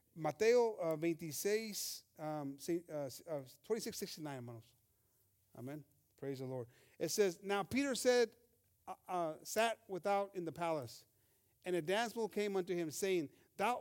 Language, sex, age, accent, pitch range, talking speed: English, male, 40-59, American, 140-225 Hz, 125 wpm